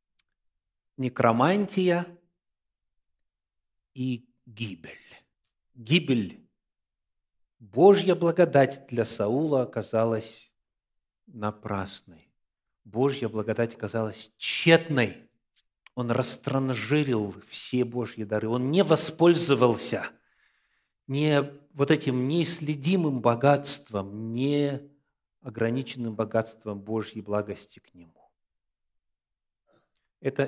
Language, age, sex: Russian, 50-69, male